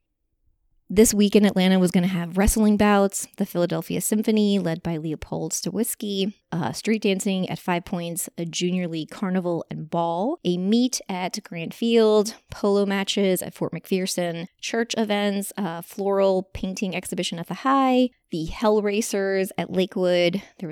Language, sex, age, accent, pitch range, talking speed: English, female, 20-39, American, 175-220 Hz, 155 wpm